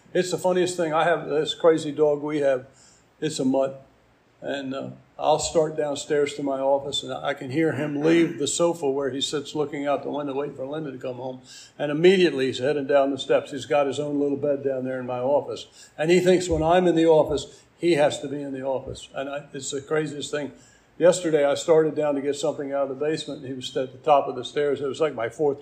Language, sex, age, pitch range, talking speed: English, male, 60-79, 135-165 Hz, 250 wpm